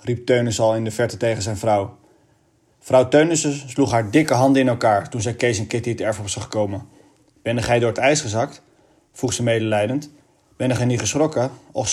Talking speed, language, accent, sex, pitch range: 205 wpm, Dutch, Dutch, male, 110-130 Hz